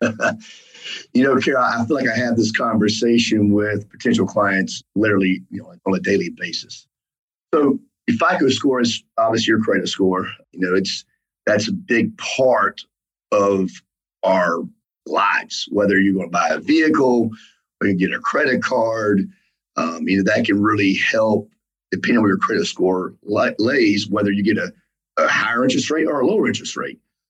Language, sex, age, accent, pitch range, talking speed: English, male, 40-59, American, 105-125 Hz, 175 wpm